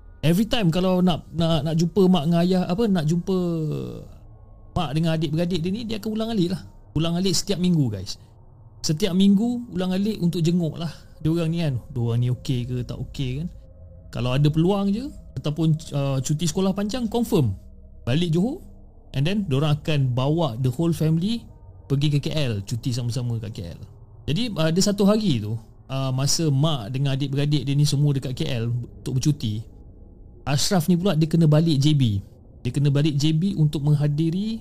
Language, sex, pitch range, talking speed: Malay, male, 120-165 Hz, 175 wpm